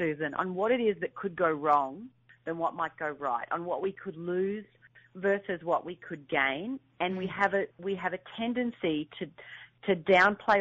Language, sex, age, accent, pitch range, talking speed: English, female, 40-59, Australian, 155-205 Hz, 185 wpm